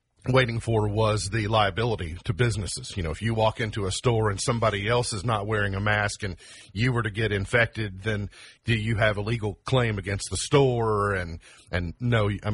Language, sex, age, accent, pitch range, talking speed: English, male, 40-59, American, 95-115 Hz, 205 wpm